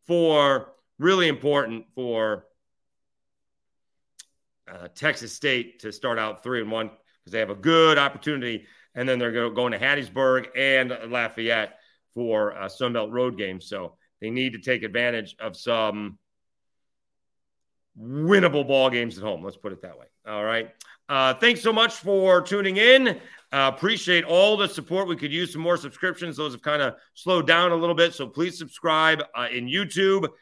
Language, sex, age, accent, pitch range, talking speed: English, male, 40-59, American, 115-170 Hz, 170 wpm